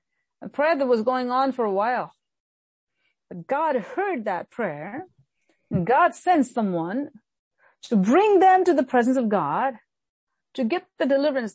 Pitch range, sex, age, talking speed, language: 200-265 Hz, female, 40-59, 155 wpm, English